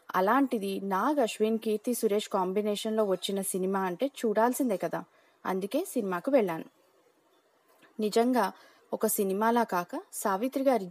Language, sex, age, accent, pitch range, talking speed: Telugu, female, 20-39, native, 185-225 Hz, 110 wpm